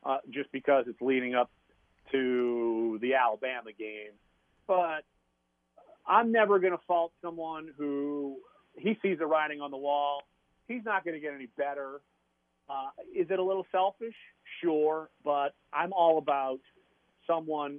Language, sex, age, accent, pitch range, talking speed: English, male, 40-59, American, 120-160 Hz, 150 wpm